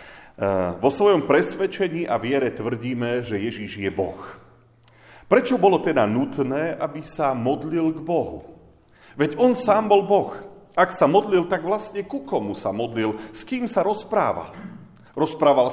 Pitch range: 110-165 Hz